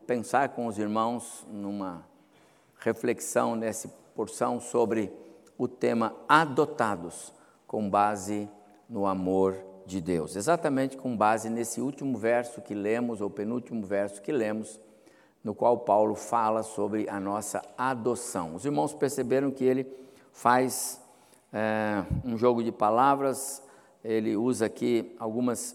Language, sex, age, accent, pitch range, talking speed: Portuguese, male, 60-79, Brazilian, 105-130 Hz, 125 wpm